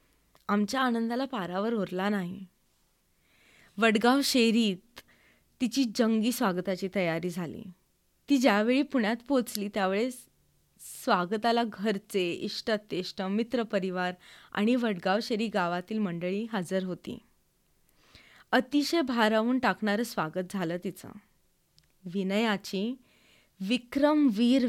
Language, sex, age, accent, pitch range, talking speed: Marathi, female, 20-39, native, 190-230 Hz, 85 wpm